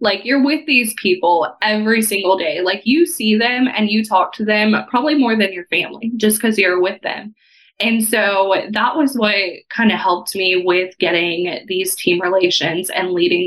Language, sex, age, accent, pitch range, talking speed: English, female, 20-39, American, 190-235 Hz, 190 wpm